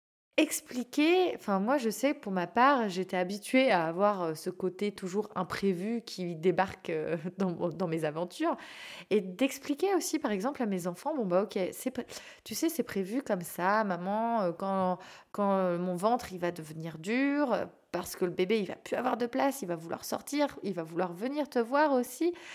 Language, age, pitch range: French, 20-39, 185-250 Hz